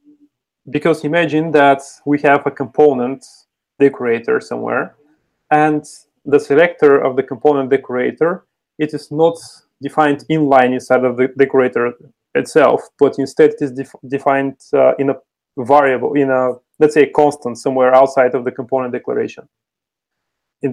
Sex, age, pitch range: male, 30-49, 130-155 Hz